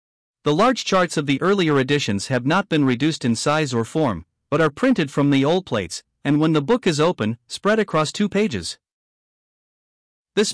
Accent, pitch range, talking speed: American, 130-165 Hz, 190 wpm